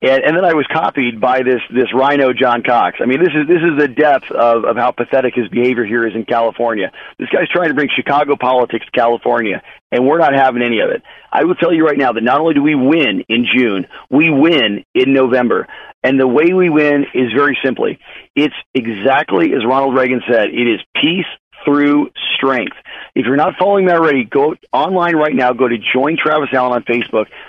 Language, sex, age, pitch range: English, male, 40-59, 125-155 Hz